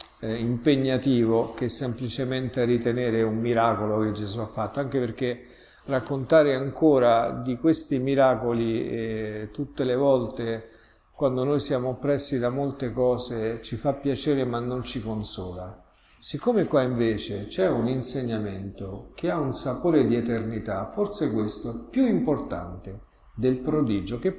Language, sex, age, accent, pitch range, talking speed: Italian, male, 50-69, native, 115-145 Hz, 135 wpm